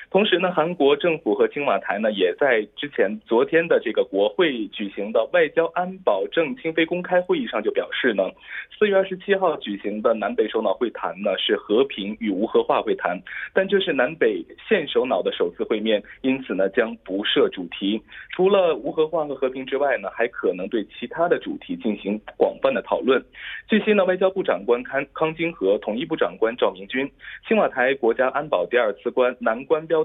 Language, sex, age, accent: Korean, male, 20-39, Chinese